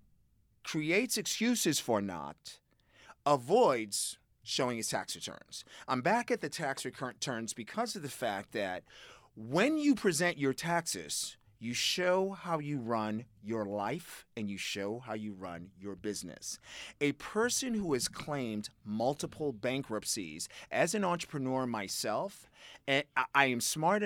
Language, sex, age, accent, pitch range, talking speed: English, male, 40-59, American, 115-155 Hz, 135 wpm